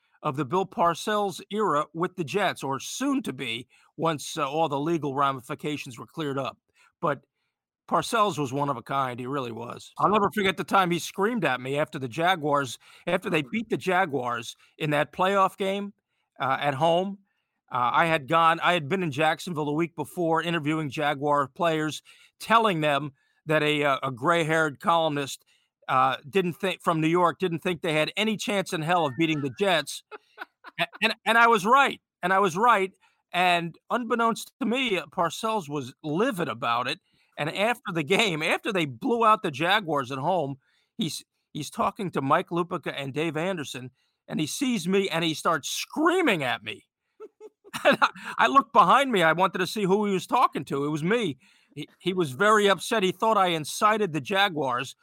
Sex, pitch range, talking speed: male, 150-200 Hz, 190 wpm